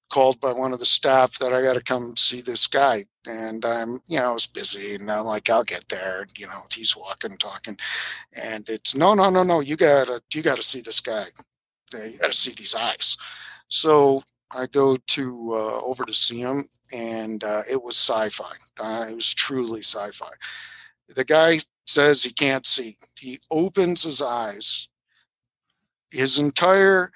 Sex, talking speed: male, 180 wpm